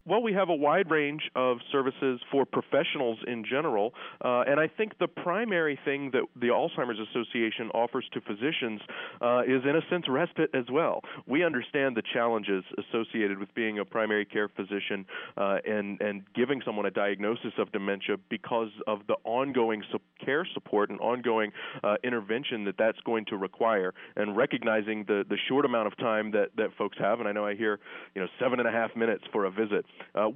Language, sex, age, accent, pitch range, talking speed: English, male, 40-59, American, 105-130 Hz, 195 wpm